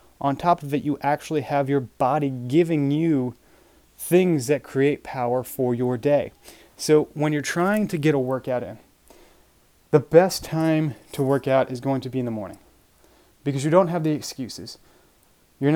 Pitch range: 135-165 Hz